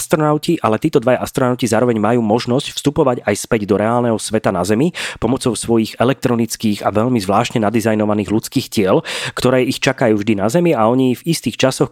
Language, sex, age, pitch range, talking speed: Slovak, male, 30-49, 105-125 Hz, 180 wpm